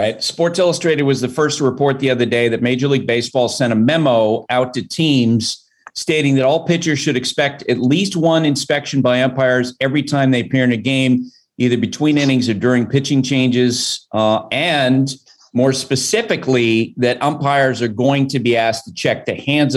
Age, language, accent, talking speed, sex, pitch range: 40-59, English, American, 185 wpm, male, 125-150 Hz